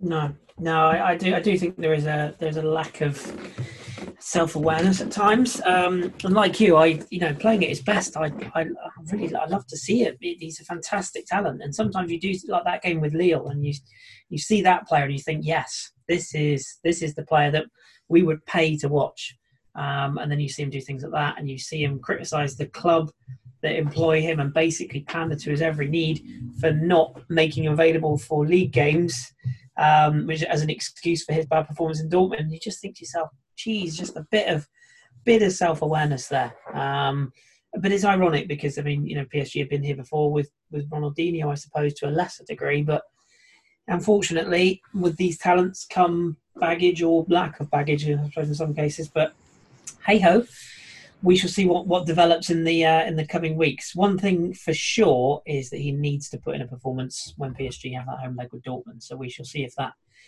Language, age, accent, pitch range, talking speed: English, 30-49, British, 145-175 Hz, 210 wpm